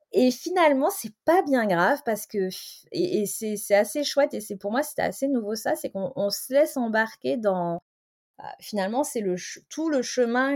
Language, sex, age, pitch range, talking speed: French, female, 20-39, 195-255 Hz, 210 wpm